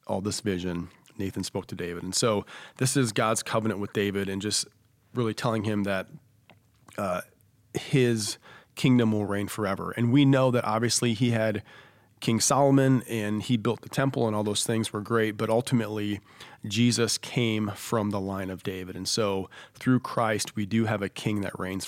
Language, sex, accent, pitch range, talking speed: English, male, American, 100-120 Hz, 185 wpm